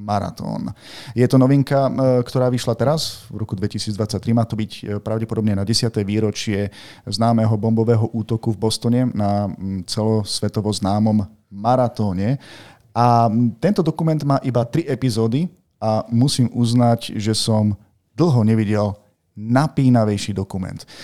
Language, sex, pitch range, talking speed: Slovak, male, 110-130 Hz, 120 wpm